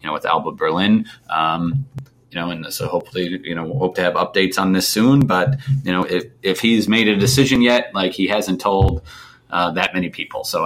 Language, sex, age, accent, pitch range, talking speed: English, male, 30-49, American, 90-120 Hz, 225 wpm